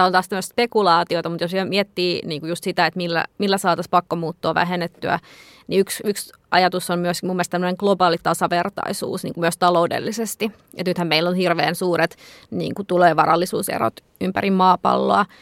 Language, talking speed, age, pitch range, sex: Finnish, 160 wpm, 20-39, 180-210 Hz, female